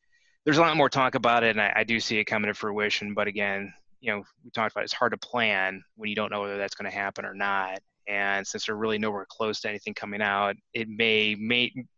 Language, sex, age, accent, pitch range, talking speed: English, male, 20-39, American, 100-110 Hz, 255 wpm